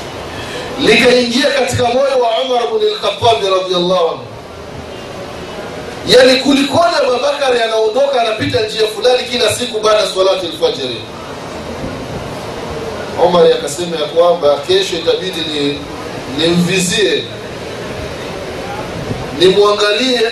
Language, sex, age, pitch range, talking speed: Swahili, male, 30-49, 165-245 Hz, 85 wpm